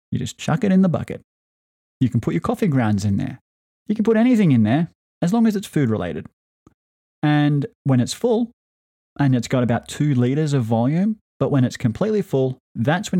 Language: English